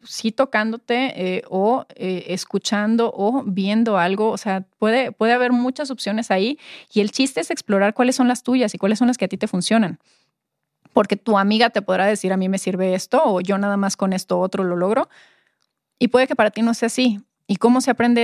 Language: Spanish